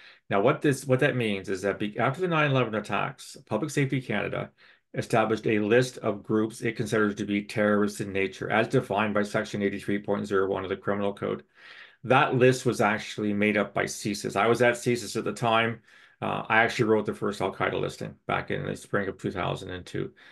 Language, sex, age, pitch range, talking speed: English, male, 40-59, 100-125 Hz, 190 wpm